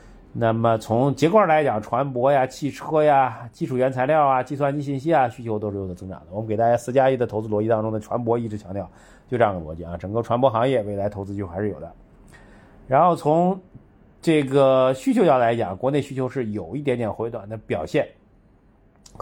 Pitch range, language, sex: 100-130 Hz, Chinese, male